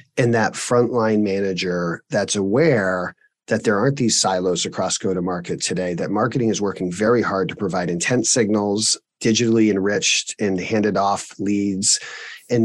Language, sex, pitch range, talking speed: English, male, 100-130 Hz, 145 wpm